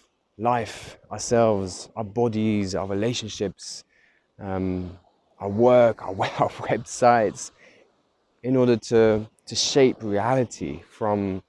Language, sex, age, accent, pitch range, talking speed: English, male, 20-39, British, 95-115 Hz, 100 wpm